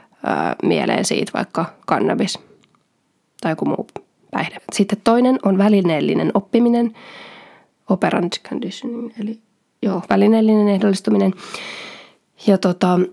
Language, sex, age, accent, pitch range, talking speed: Finnish, female, 20-39, native, 175-210 Hz, 95 wpm